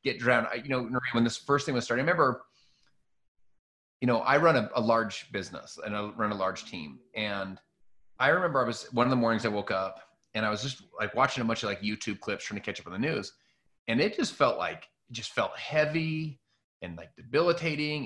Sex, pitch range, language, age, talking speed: male, 110-145 Hz, English, 30-49, 230 wpm